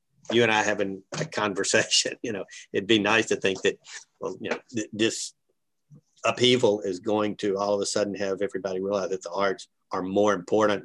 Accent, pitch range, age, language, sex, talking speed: American, 95-115 Hz, 50-69, English, male, 205 wpm